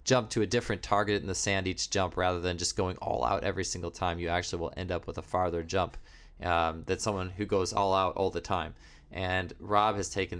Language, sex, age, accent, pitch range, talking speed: English, male, 20-39, American, 90-110 Hz, 245 wpm